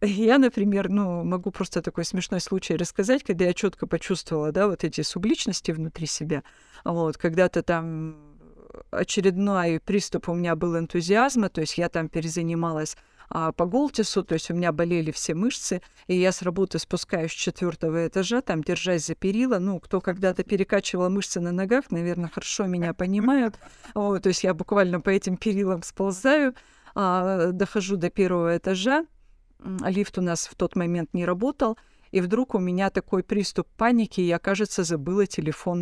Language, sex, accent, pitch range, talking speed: Russian, female, native, 175-225 Hz, 170 wpm